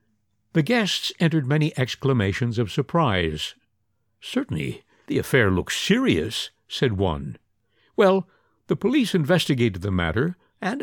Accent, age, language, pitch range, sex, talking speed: American, 60-79, English, 110-165 Hz, male, 115 wpm